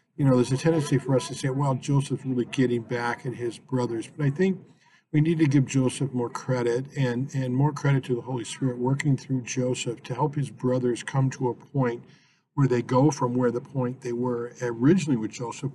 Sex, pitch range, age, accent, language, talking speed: male, 120-140 Hz, 50-69, American, English, 220 wpm